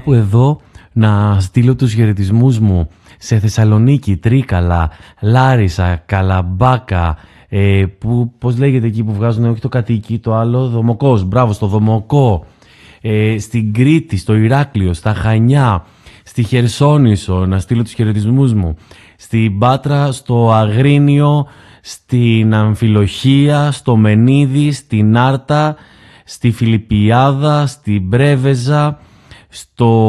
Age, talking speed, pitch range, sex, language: 30-49, 115 wpm, 105-135 Hz, male, Greek